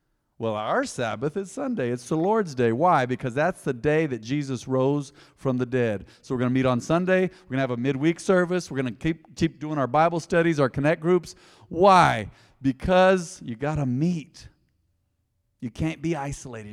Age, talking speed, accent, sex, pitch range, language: 50-69, 200 wpm, American, male, 120-185 Hz, English